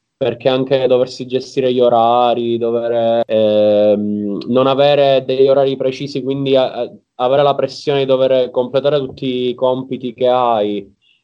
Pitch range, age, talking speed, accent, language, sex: 105-130 Hz, 20-39, 130 wpm, native, Italian, male